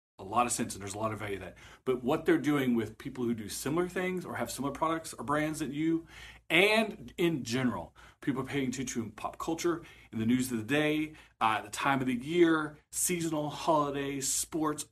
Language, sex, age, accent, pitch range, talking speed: English, male, 40-59, American, 110-155 Hz, 215 wpm